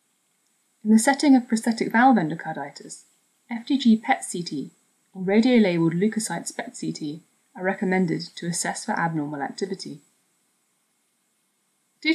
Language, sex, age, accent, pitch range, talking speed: English, female, 20-39, British, 170-235 Hz, 105 wpm